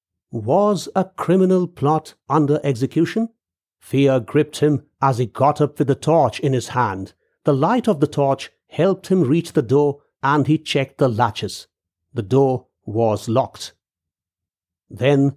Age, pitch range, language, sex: 60-79, 115-175 Hz, English, male